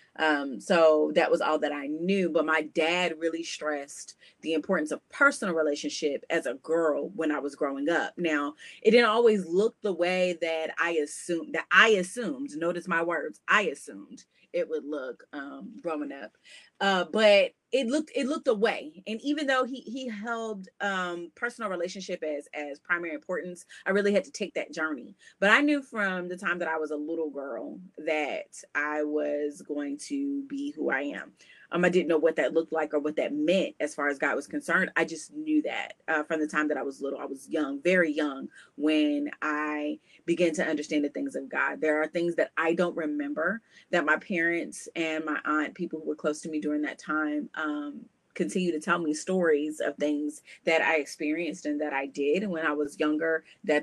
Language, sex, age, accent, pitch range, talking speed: English, female, 30-49, American, 150-195 Hz, 205 wpm